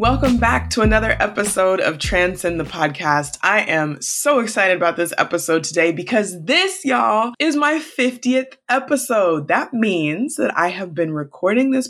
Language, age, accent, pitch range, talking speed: English, 20-39, American, 170-245 Hz, 160 wpm